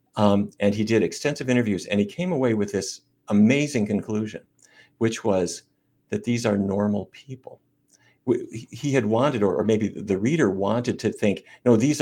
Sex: male